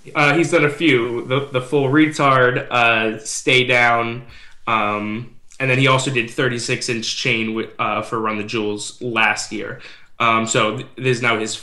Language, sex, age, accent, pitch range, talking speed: English, male, 20-39, American, 110-140 Hz, 190 wpm